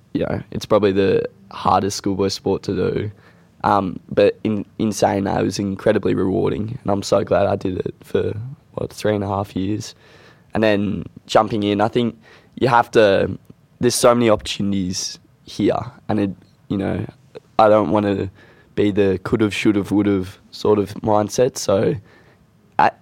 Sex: male